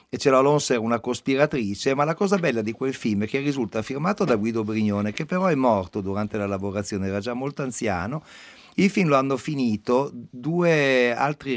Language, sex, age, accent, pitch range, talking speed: Italian, male, 50-69, native, 105-140 Hz, 200 wpm